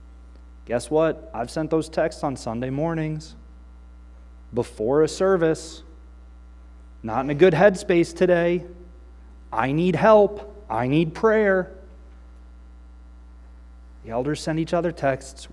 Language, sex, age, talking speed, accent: English, male, 30-49, 115 wpm, American